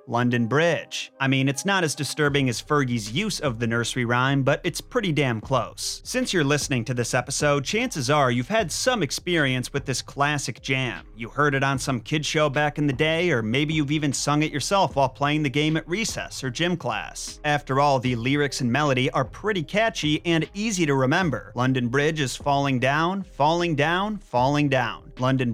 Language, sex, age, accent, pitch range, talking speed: English, male, 30-49, American, 125-155 Hz, 200 wpm